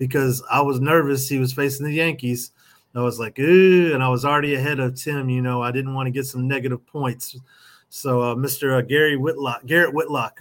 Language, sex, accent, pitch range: English, male, American, 125-145 Hz